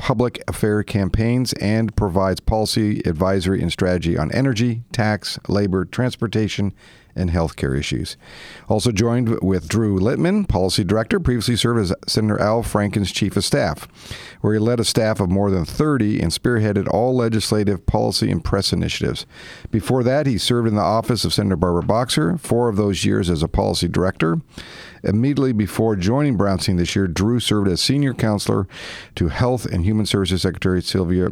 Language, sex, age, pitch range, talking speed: English, male, 50-69, 95-120 Hz, 165 wpm